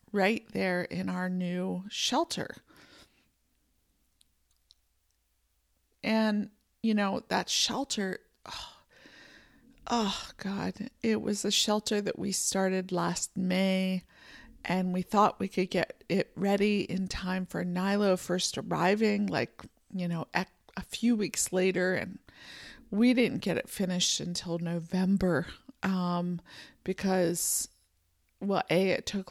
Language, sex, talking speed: English, female, 120 wpm